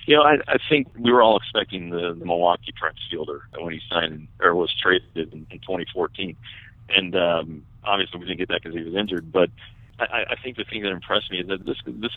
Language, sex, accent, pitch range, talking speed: English, male, American, 85-105 Hz, 230 wpm